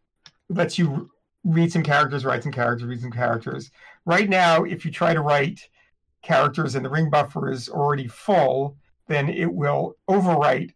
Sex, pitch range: male, 125-155 Hz